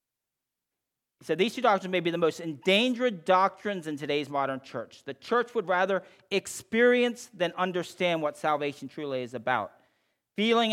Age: 40-59